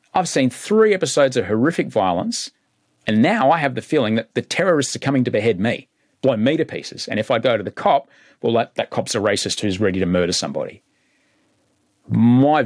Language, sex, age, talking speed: English, male, 40-59, 210 wpm